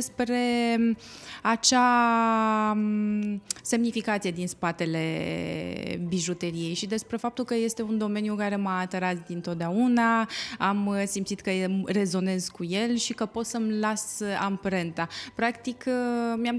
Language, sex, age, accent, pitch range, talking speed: Romanian, female, 20-39, native, 185-225 Hz, 110 wpm